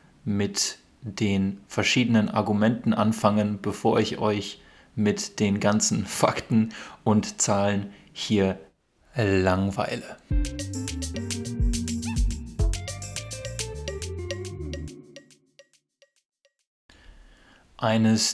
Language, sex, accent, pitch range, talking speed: German, male, German, 95-115 Hz, 55 wpm